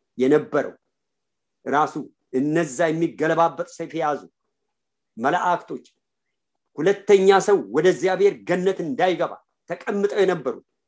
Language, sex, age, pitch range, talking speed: English, male, 50-69, 155-205 Hz, 100 wpm